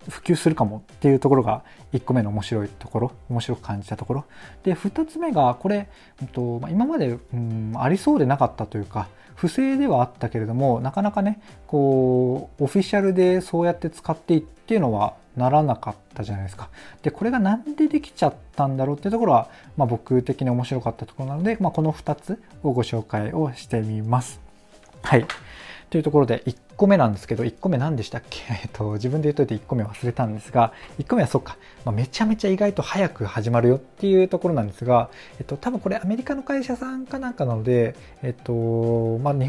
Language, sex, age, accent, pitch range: Japanese, male, 20-39, native, 115-165 Hz